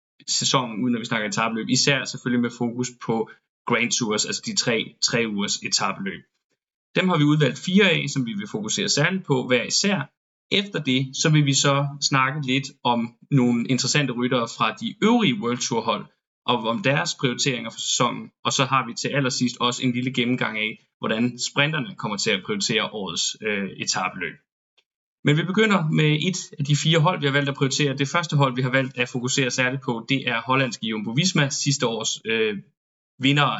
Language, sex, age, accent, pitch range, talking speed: Danish, male, 20-39, native, 125-150 Hz, 195 wpm